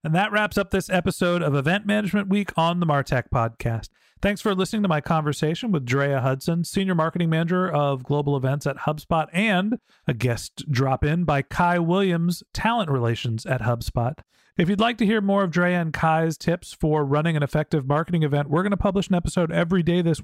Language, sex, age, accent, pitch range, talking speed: English, male, 40-59, American, 150-190 Hz, 200 wpm